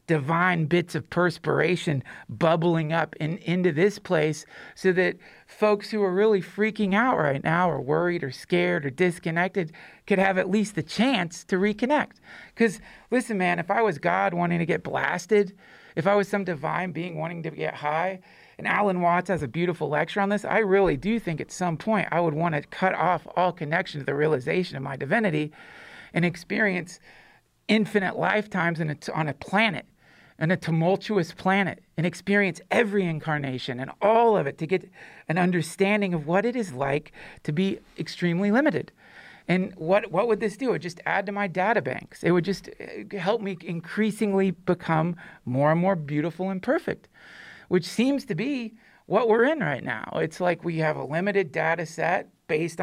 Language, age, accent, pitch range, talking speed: English, 40-59, American, 165-205 Hz, 185 wpm